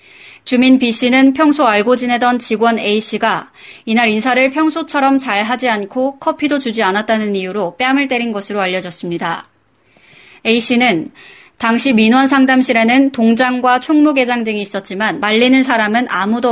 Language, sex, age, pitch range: Korean, female, 20-39, 215-265 Hz